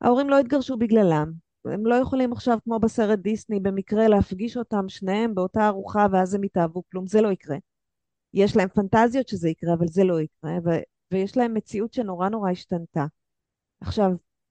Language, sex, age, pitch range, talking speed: Hebrew, female, 30-49, 180-235 Hz, 170 wpm